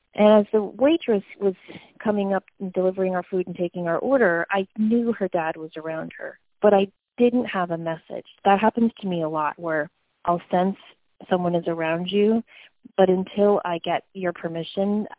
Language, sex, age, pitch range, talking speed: English, female, 30-49, 170-210 Hz, 185 wpm